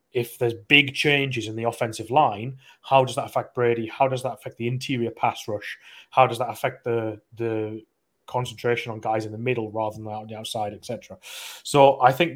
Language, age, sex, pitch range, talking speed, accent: English, 30-49, male, 115-130 Hz, 205 wpm, British